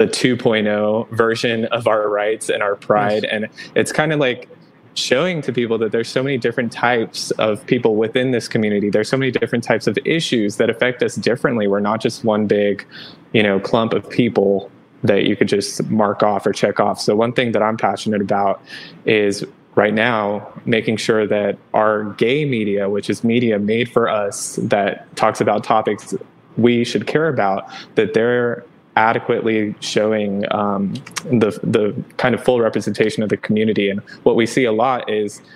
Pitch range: 100-115 Hz